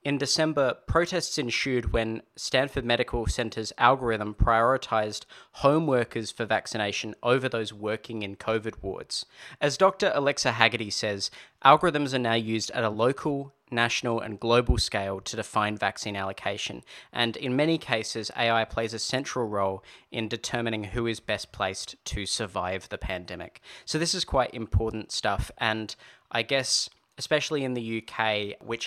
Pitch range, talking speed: 105-120 Hz, 150 wpm